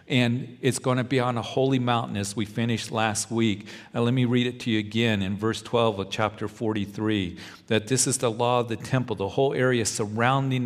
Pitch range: 105-120 Hz